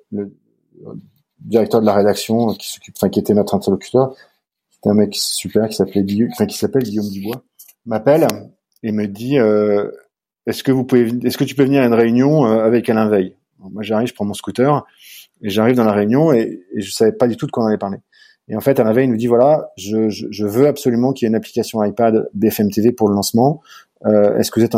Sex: male